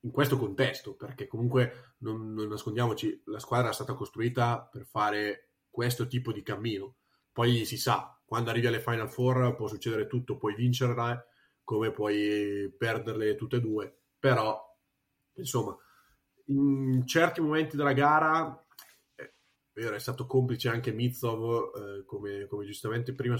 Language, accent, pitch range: Italian, native, 110-130 Hz